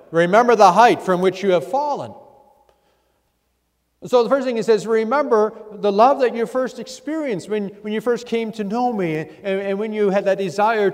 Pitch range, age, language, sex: 185-245 Hz, 50-69, English, male